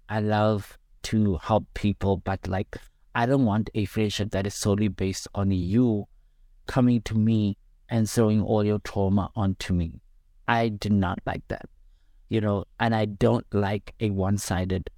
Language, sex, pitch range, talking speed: English, male, 95-110 Hz, 165 wpm